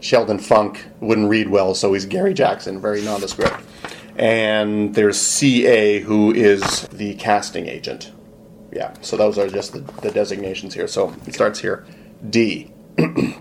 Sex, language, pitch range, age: male, English, 110-155 Hz, 30-49